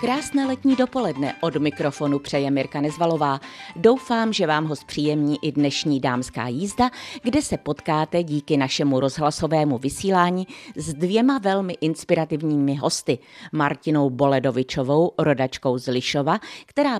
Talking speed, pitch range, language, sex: 125 wpm, 140-195 Hz, Czech, female